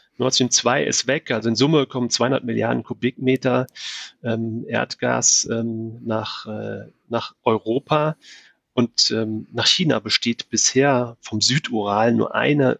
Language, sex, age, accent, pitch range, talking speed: German, male, 30-49, German, 110-130 Hz, 130 wpm